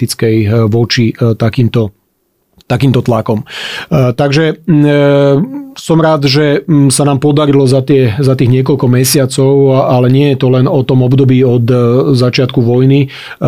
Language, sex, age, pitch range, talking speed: Slovak, male, 40-59, 125-150 Hz, 125 wpm